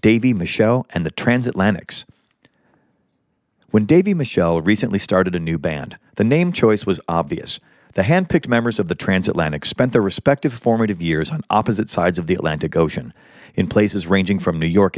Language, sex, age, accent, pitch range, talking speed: English, male, 40-59, American, 90-120 Hz, 170 wpm